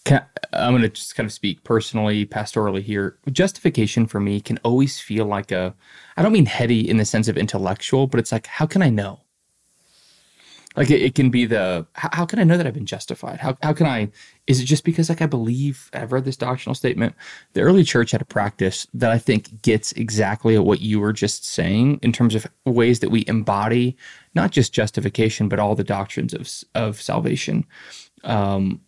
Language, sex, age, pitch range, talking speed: English, male, 20-39, 105-130 Hz, 210 wpm